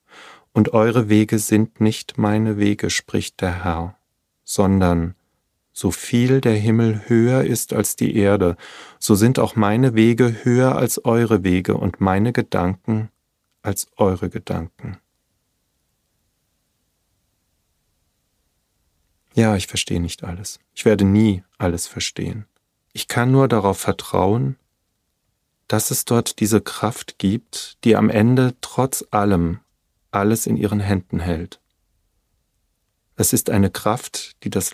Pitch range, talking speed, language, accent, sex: 90-110 Hz, 125 wpm, German, German, male